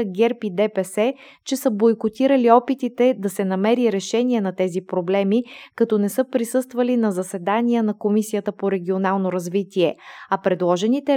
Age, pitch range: 20-39, 190-235 Hz